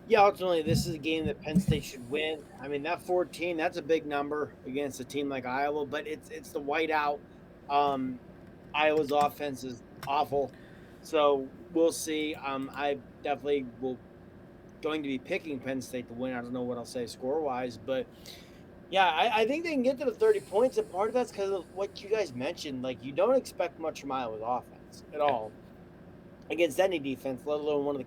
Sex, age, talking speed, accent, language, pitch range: male, 30-49, 205 wpm, American, English, 135-165 Hz